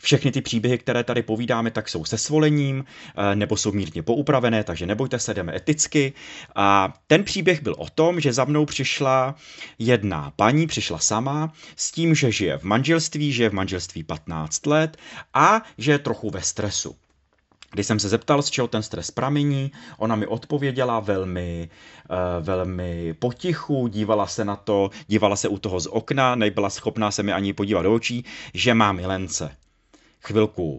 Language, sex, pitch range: Czech, male, 100-125 Hz